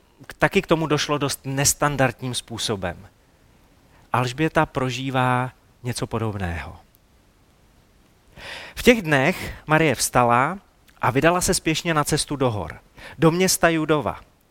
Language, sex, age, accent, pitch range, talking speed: Czech, male, 30-49, native, 120-165 Hz, 110 wpm